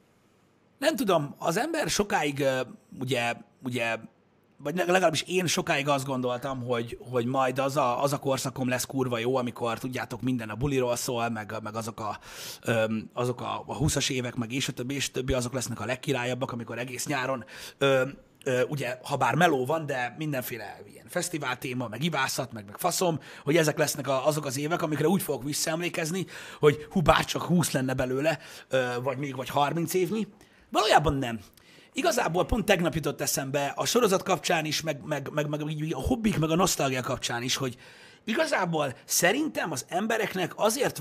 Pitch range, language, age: 125-160 Hz, Hungarian, 30-49